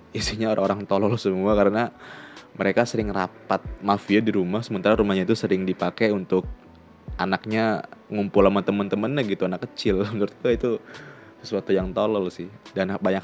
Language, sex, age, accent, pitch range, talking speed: Indonesian, male, 20-39, native, 90-105 Hz, 145 wpm